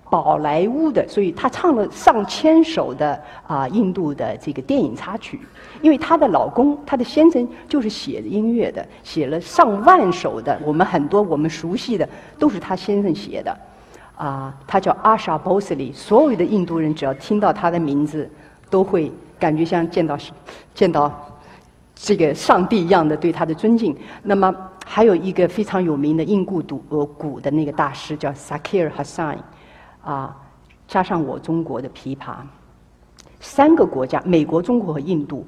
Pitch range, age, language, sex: 150-215 Hz, 50-69, Chinese, female